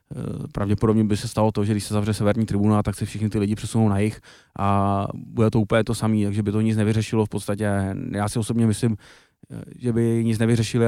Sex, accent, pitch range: male, native, 105-115 Hz